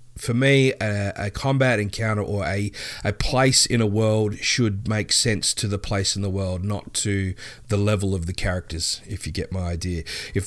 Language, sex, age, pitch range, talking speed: English, male, 30-49, 100-120 Hz, 200 wpm